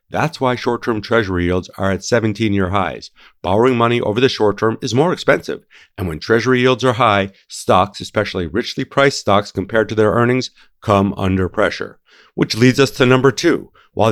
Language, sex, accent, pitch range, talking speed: English, male, American, 100-125 Hz, 185 wpm